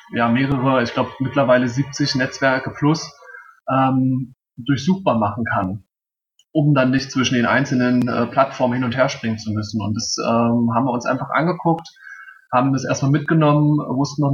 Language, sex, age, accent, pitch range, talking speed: German, male, 20-39, German, 125-145 Hz, 165 wpm